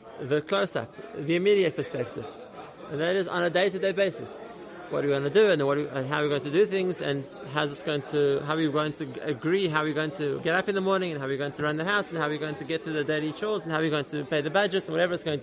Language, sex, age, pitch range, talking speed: English, male, 30-49, 150-190 Hz, 330 wpm